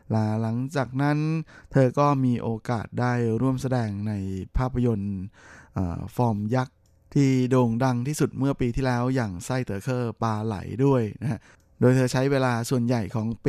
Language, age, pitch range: Thai, 20-39, 115-135 Hz